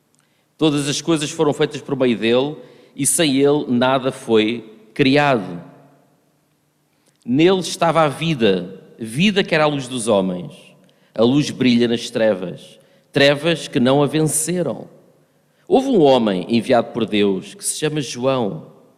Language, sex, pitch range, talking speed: Portuguese, male, 115-155 Hz, 140 wpm